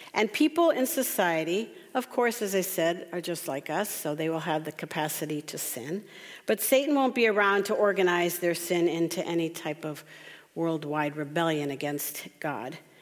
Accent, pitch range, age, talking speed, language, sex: American, 165-225 Hz, 50-69, 175 wpm, English, female